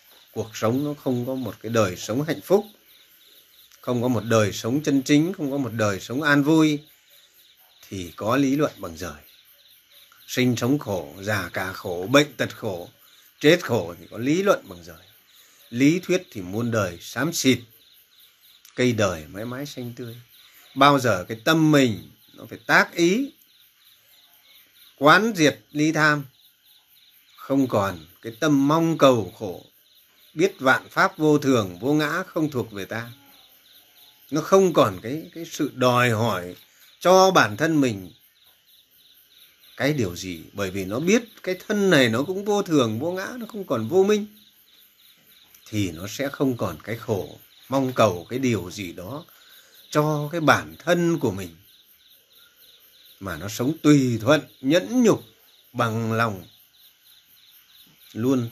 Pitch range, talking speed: 110-155 Hz, 160 wpm